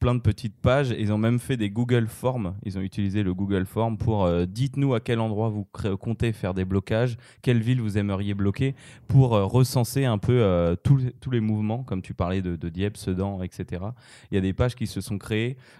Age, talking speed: 20-39, 230 wpm